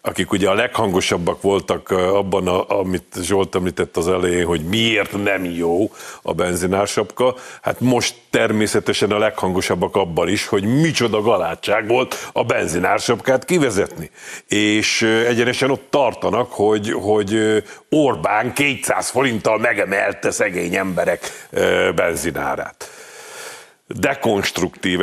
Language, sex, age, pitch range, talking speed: Hungarian, male, 50-69, 95-120 Hz, 110 wpm